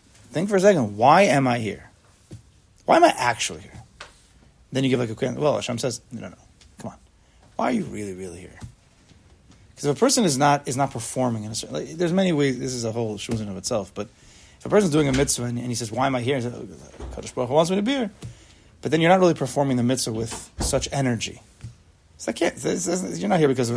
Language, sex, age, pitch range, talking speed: English, male, 30-49, 100-145 Hz, 265 wpm